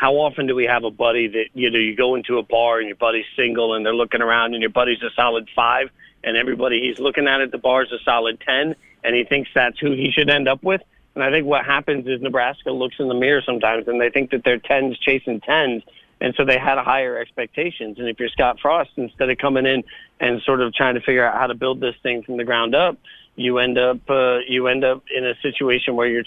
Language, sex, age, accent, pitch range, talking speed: English, male, 40-59, American, 120-150 Hz, 265 wpm